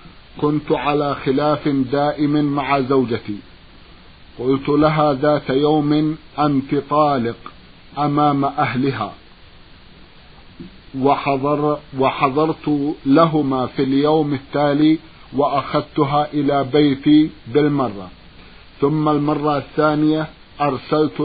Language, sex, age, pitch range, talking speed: Arabic, male, 50-69, 135-150 Hz, 80 wpm